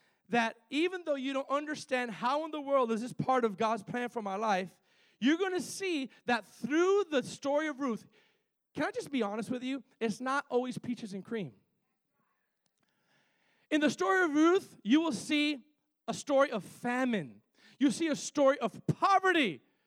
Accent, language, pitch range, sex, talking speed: American, English, 225-300 Hz, male, 180 wpm